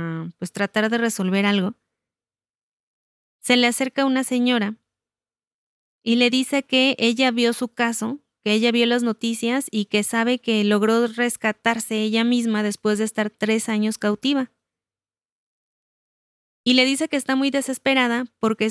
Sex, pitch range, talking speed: female, 215-250 Hz, 145 wpm